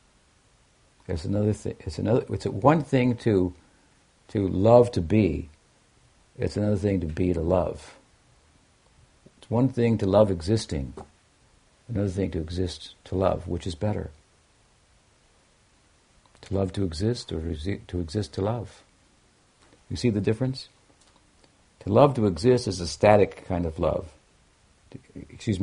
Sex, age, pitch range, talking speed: male, 60-79, 90-110 Hz, 145 wpm